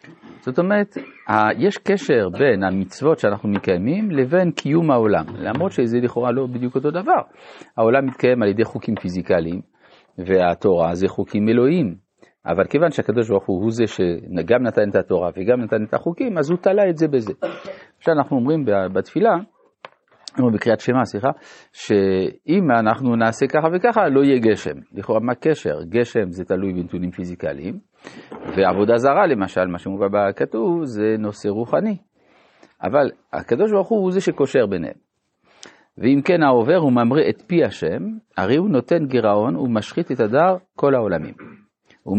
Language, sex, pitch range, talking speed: Hebrew, male, 105-160 Hz, 150 wpm